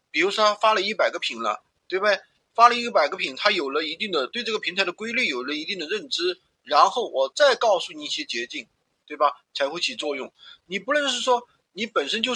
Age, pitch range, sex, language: 30-49, 155-245 Hz, male, Chinese